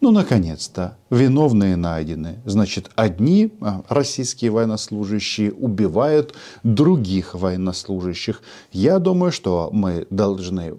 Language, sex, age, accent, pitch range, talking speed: Russian, male, 40-59, native, 95-125 Hz, 90 wpm